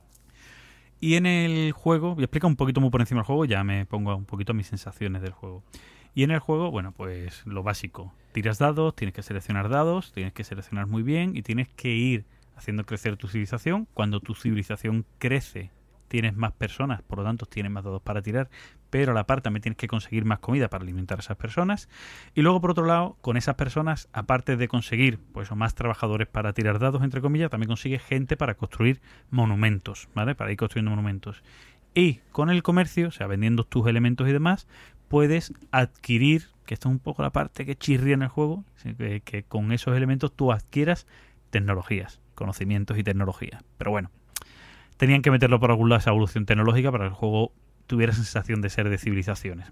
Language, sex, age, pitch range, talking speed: Spanish, male, 30-49, 105-135 Hz, 205 wpm